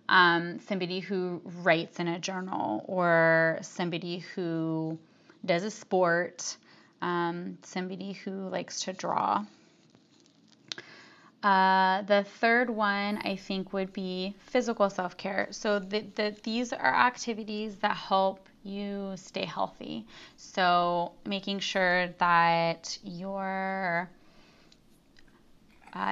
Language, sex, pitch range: English, female, 180-210 Hz